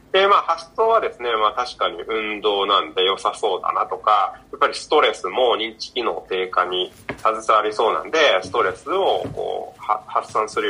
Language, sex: Japanese, male